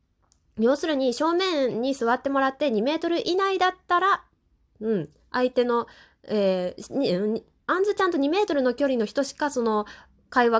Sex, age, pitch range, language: female, 20-39, 200-300 Hz, Japanese